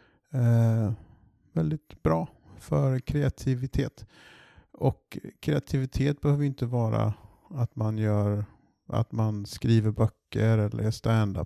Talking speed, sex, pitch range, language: 105 wpm, male, 110-130 Hz, Swedish